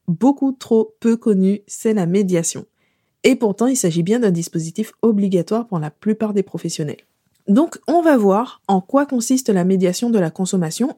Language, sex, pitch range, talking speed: French, female, 185-240 Hz, 175 wpm